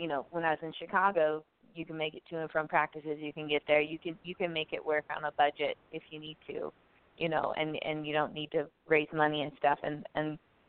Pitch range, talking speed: 155-180 Hz, 265 wpm